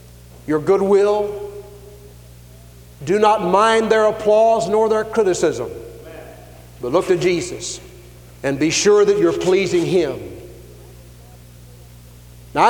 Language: English